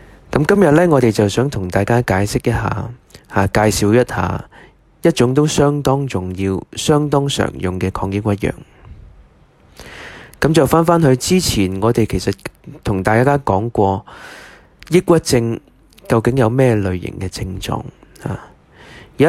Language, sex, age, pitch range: Chinese, male, 20-39, 100-135 Hz